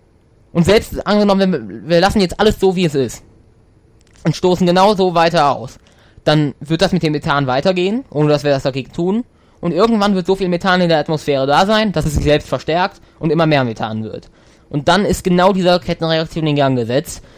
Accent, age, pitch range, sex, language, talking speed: German, 20-39, 135-170 Hz, male, German, 210 wpm